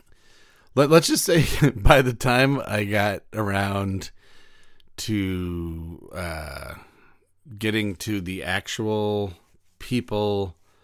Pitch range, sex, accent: 85-105 Hz, male, American